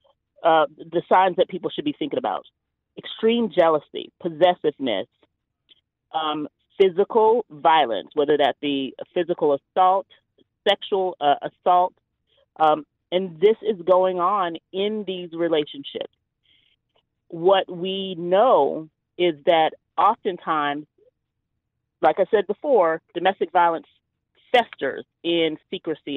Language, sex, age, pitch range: English, female, 40-59, 155-200 Hz